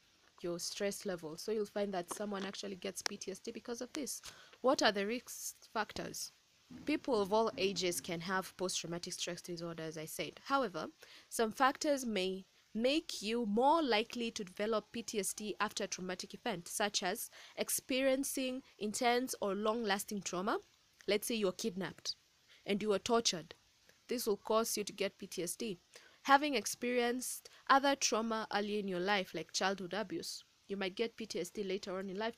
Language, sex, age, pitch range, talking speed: English, female, 20-39, 185-235 Hz, 165 wpm